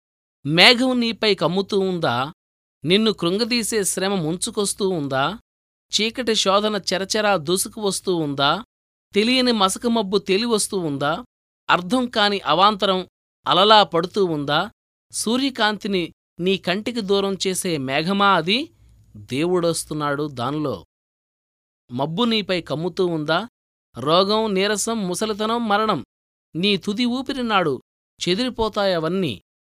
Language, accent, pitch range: Telugu, native, 150-210 Hz